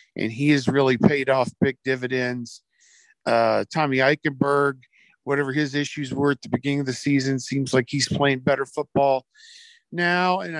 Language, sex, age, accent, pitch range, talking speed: English, male, 50-69, American, 140-170 Hz, 165 wpm